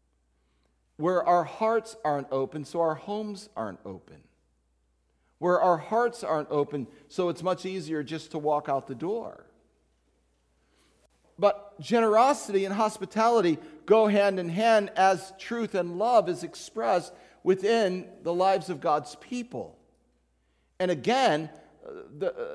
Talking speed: 130 wpm